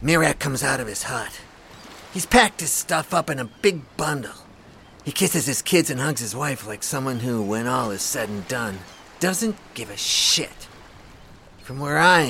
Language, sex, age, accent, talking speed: English, male, 40-59, American, 190 wpm